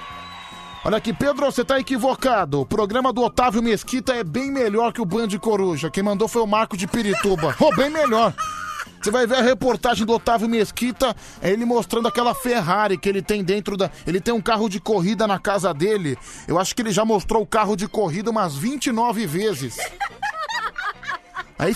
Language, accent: Portuguese, Brazilian